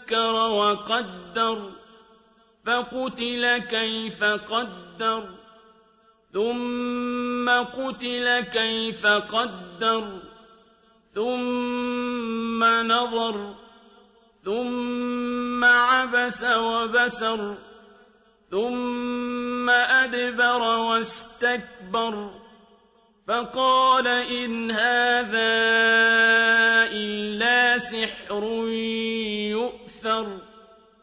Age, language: 50-69, Arabic